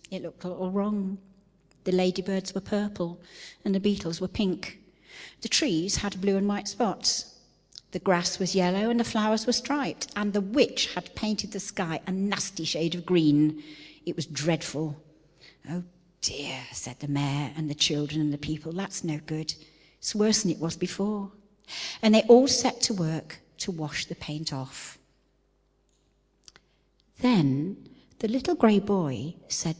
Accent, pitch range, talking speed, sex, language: British, 155-205 Hz, 165 wpm, female, English